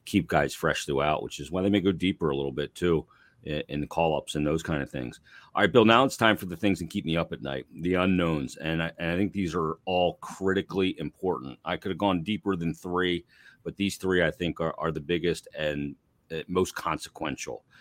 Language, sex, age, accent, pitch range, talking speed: English, male, 40-59, American, 80-100 Hz, 230 wpm